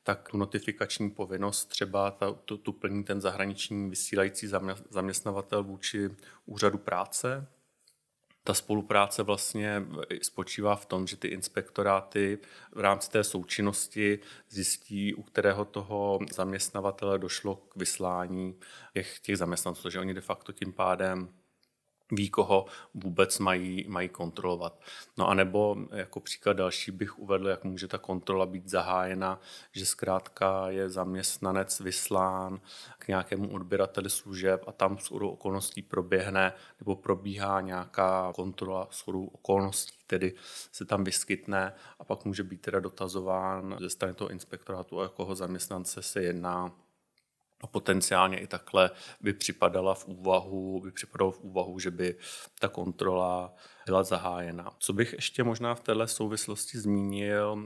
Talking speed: 130 wpm